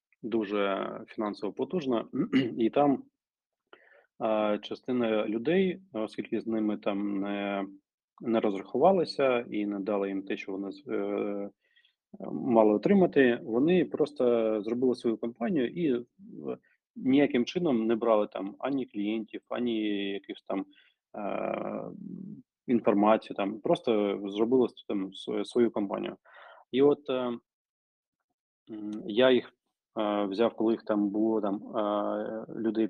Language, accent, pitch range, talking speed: Ukrainian, native, 105-125 Hz, 100 wpm